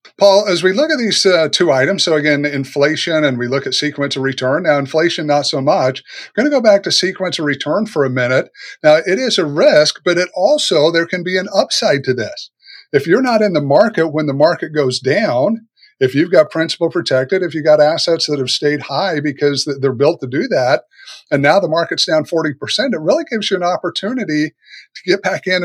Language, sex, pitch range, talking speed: English, male, 145-185 Hz, 225 wpm